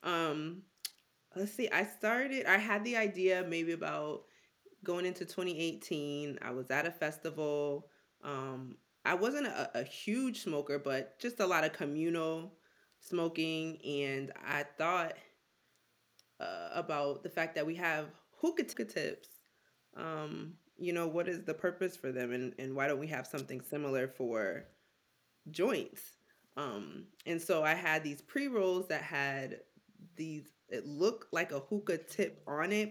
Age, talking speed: 20-39, 155 wpm